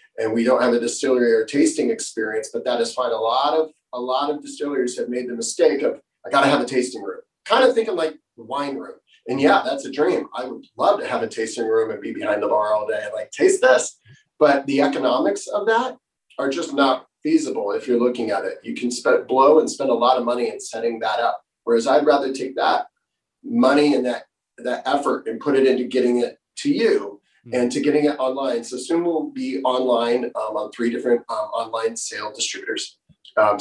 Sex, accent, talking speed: male, American, 230 wpm